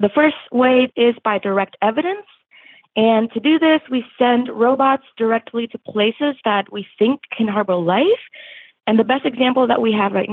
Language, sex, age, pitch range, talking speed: English, female, 20-39, 210-275 Hz, 180 wpm